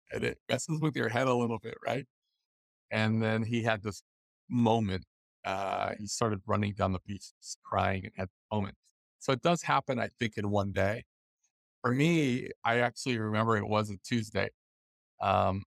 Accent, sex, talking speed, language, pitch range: American, male, 185 wpm, English, 95-120 Hz